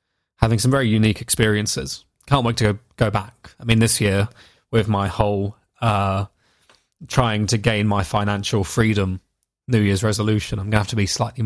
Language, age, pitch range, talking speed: English, 20-39, 105-120 Hz, 185 wpm